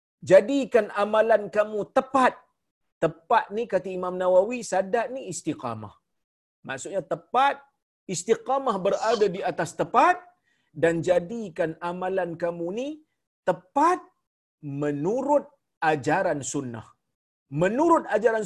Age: 40-59